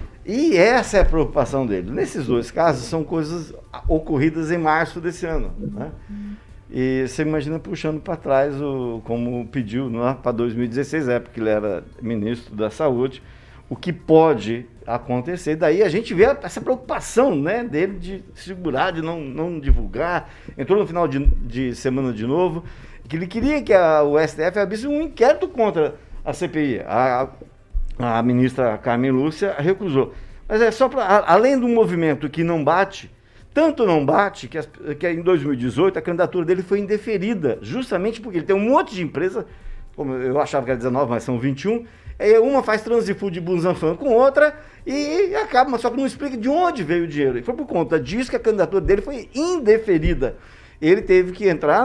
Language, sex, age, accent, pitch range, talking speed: Portuguese, male, 50-69, Brazilian, 130-215 Hz, 180 wpm